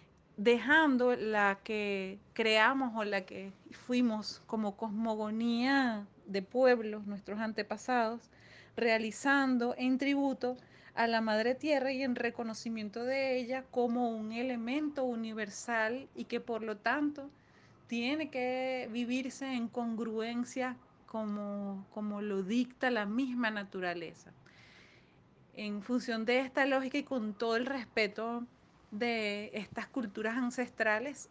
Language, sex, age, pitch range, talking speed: Spanish, female, 30-49, 205-245 Hz, 115 wpm